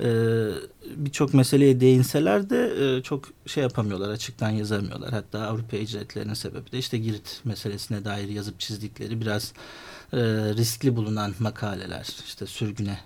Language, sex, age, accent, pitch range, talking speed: Turkish, male, 50-69, native, 105-145 Hz, 120 wpm